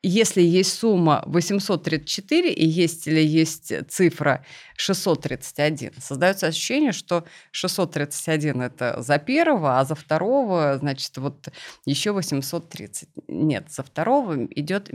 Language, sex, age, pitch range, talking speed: Russian, female, 30-49, 140-180 Hz, 115 wpm